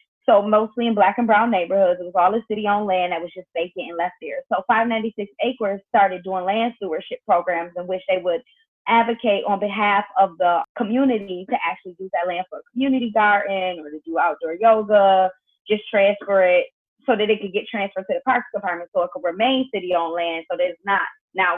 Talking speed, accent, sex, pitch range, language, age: 210 wpm, American, female, 175-225 Hz, English, 20-39